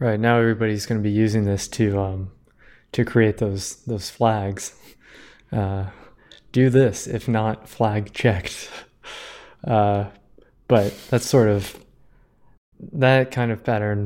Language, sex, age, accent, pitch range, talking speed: English, male, 20-39, American, 105-125 Hz, 130 wpm